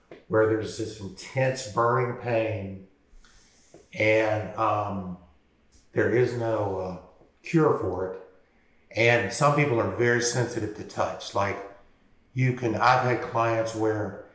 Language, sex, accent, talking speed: English, male, American, 125 wpm